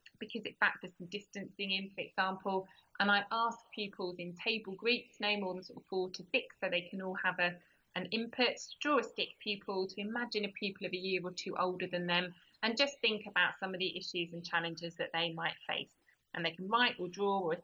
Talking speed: 235 wpm